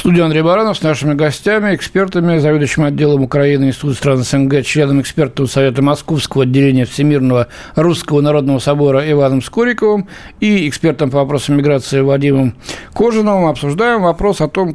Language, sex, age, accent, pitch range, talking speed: Russian, male, 60-79, native, 135-165 Hz, 140 wpm